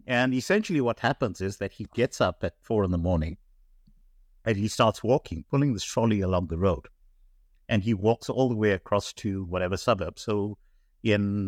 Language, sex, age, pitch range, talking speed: English, male, 60-79, 90-120 Hz, 190 wpm